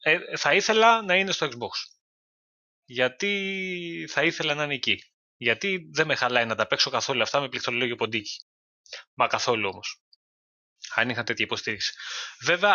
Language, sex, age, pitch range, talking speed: Greek, male, 20-39, 110-160 Hz, 150 wpm